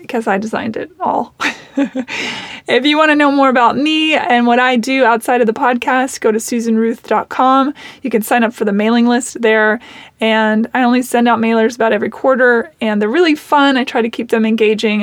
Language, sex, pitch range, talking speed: English, female, 225-275 Hz, 210 wpm